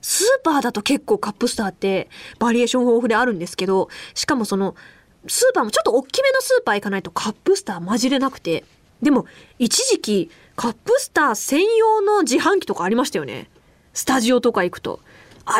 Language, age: Japanese, 20-39